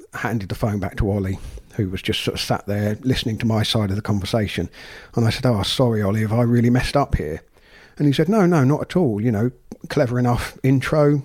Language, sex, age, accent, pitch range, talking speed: English, male, 50-69, British, 110-135 Hz, 240 wpm